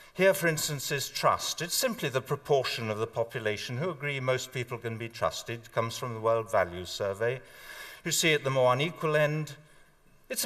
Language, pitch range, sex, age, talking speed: Russian, 115-160 Hz, male, 60-79, 190 wpm